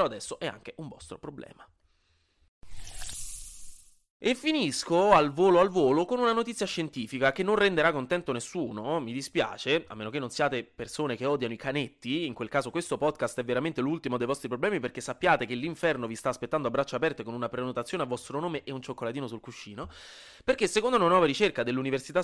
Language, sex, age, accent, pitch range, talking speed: Italian, male, 20-39, native, 120-170 Hz, 190 wpm